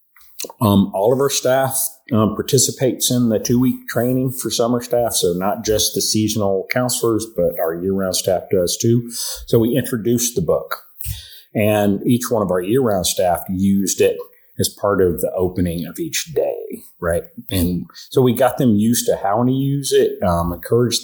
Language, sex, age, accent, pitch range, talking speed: English, male, 40-59, American, 95-120 Hz, 175 wpm